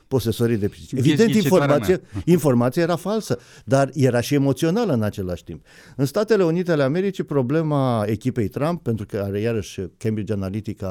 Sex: male